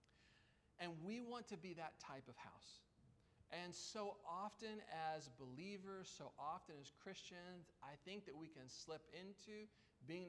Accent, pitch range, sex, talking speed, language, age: American, 145-185 Hz, male, 150 wpm, English, 40-59